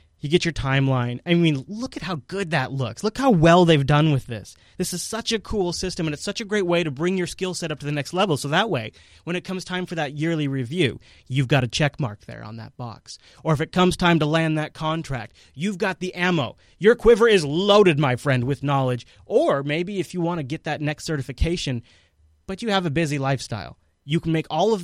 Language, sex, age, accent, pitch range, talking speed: English, male, 30-49, American, 130-175 Hz, 250 wpm